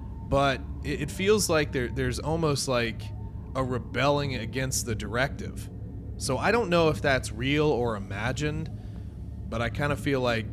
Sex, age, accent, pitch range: male, 30-49, American, 105-145 Hz